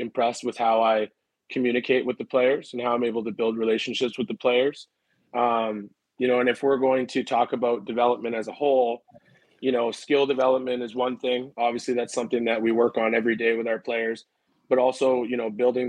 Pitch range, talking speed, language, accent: 115-130 Hz, 210 wpm, English, American